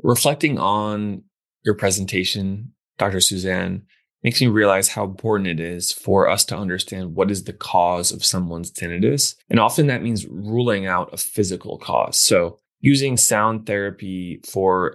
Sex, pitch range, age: male, 95-110 Hz, 20-39